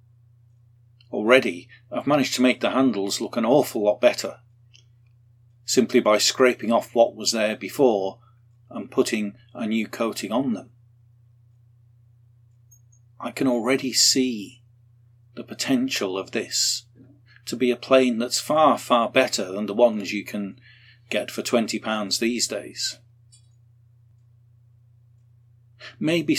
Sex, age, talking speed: male, 40-59, 125 wpm